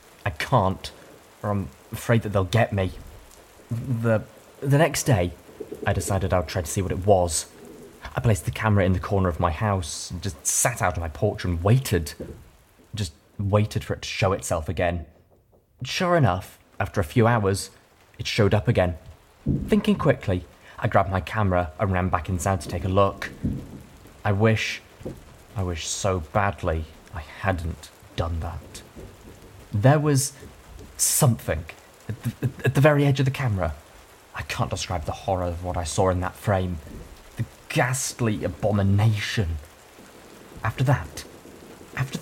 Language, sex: English, male